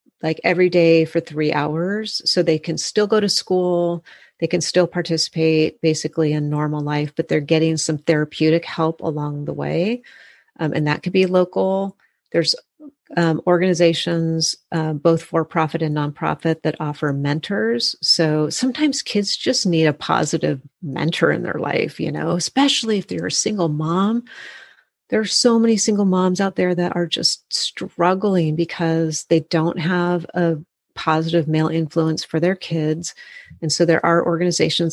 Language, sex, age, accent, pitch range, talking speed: English, female, 40-59, American, 160-185 Hz, 165 wpm